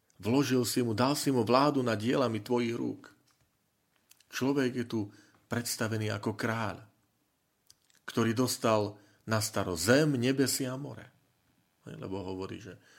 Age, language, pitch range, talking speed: 40-59, Slovak, 95-125 Hz, 130 wpm